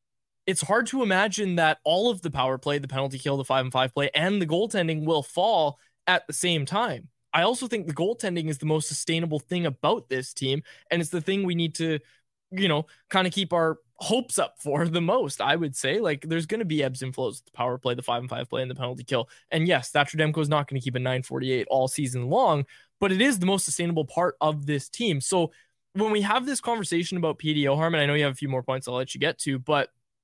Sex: male